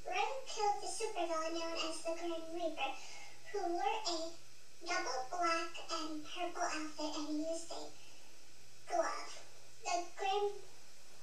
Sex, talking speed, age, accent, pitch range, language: male, 125 wpm, 10-29, American, 335-395 Hz, English